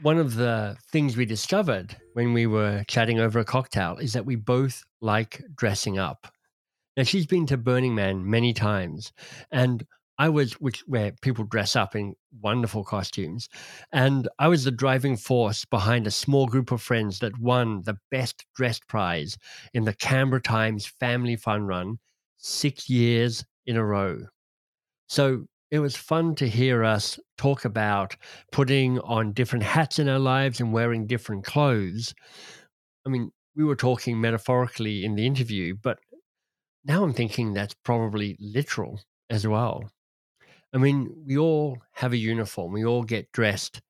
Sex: male